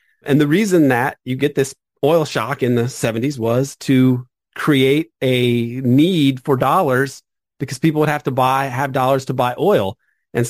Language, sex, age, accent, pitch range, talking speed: English, male, 30-49, American, 115-135 Hz, 175 wpm